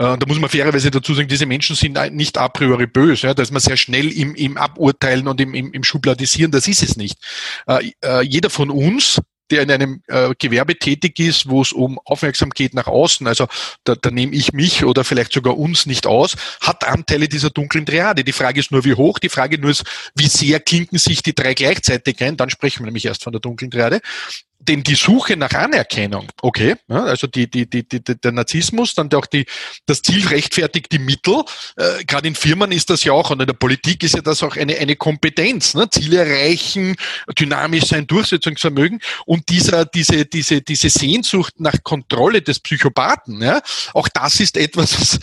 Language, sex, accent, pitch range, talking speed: German, male, Austrian, 135-165 Hz, 200 wpm